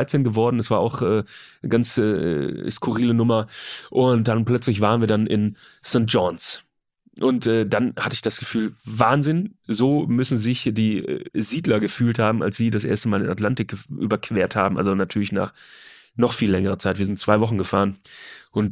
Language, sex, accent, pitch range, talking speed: German, male, German, 110-140 Hz, 185 wpm